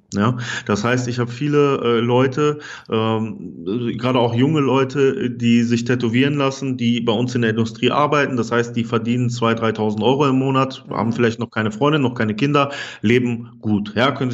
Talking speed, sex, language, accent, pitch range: 190 wpm, male, German, German, 115-130 Hz